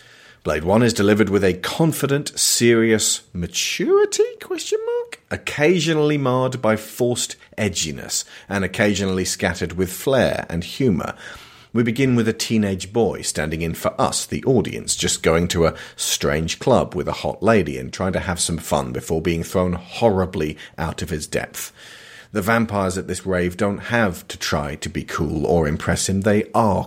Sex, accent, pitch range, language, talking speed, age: male, British, 90-110 Hz, English, 170 wpm, 40-59